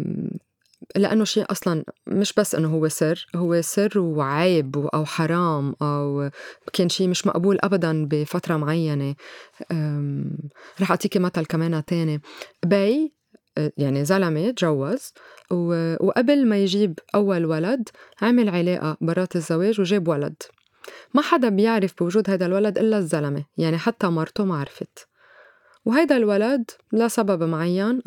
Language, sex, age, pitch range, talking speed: Arabic, female, 20-39, 160-220 Hz, 125 wpm